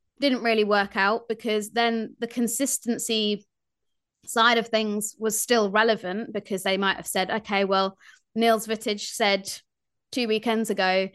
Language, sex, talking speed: English, female, 140 wpm